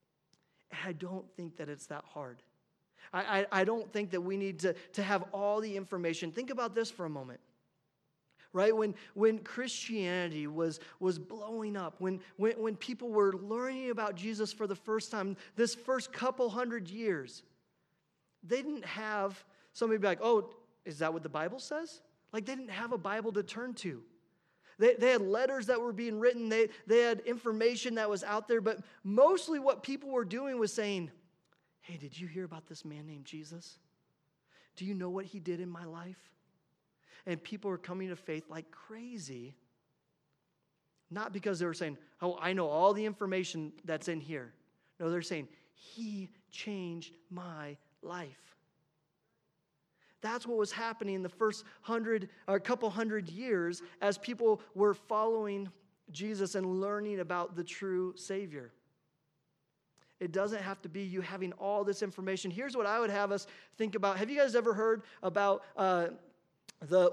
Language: English